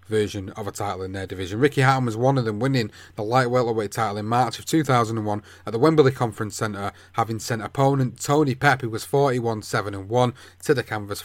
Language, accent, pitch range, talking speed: English, British, 105-140 Hz, 220 wpm